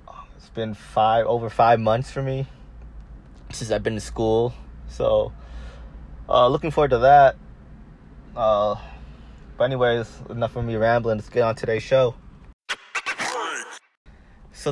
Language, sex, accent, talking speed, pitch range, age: English, male, American, 130 wpm, 95-115 Hz, 20-39